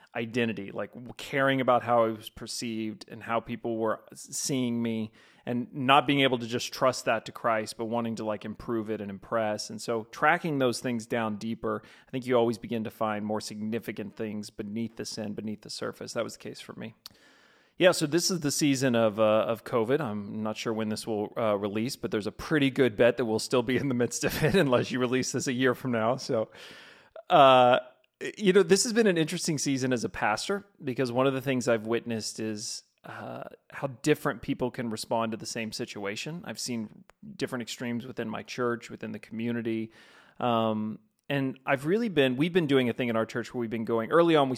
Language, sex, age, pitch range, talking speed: English, male, 30-49, 110-130 Hz, 220 wpm